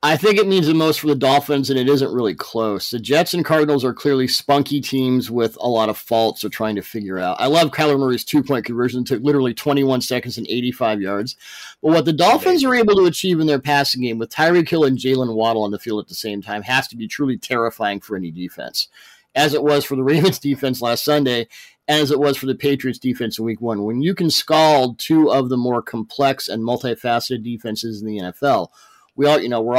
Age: 40-59